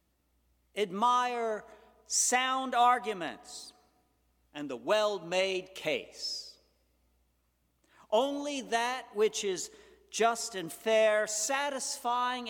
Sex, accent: male, American